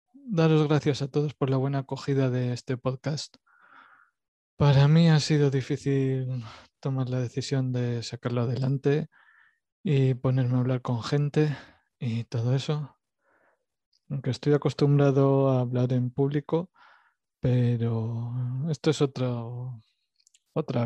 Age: 20-39